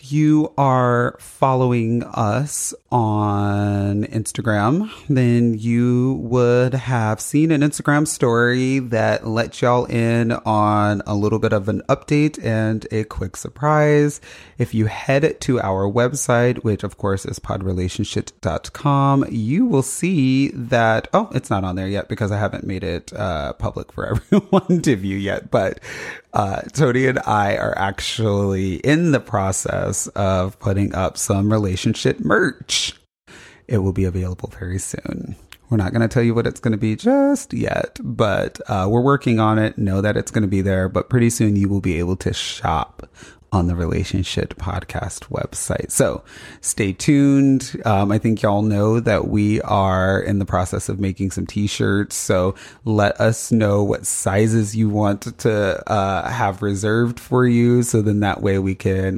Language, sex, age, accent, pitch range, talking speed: English, male, 30-49, American, 100-125 Hz, 165 wpm